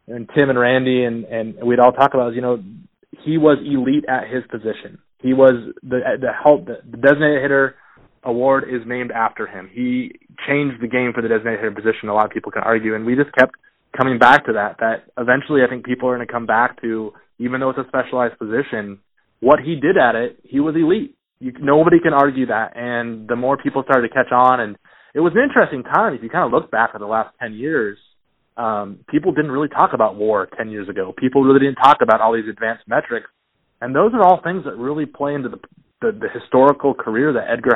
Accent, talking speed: American, 230 wpm